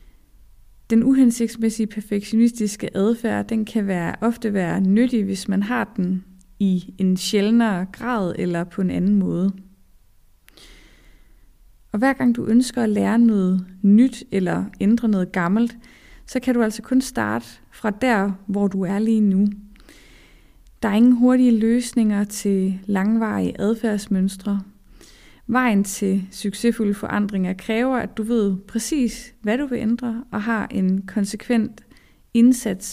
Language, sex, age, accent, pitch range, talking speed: Danish, female, 20-39, native, 190-230 Hz, 135 wpm